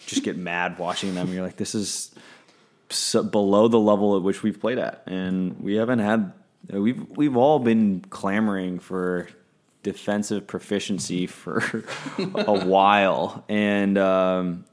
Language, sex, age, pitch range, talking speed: English, male, 20-39, 90-100 Hz, 145 wpm